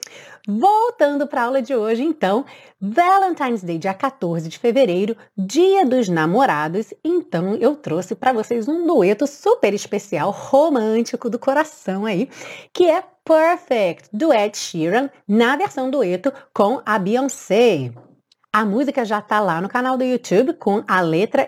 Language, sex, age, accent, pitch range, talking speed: Portuguese, female, 30-49, Brazilian, 195-280 Hz, 145 wpm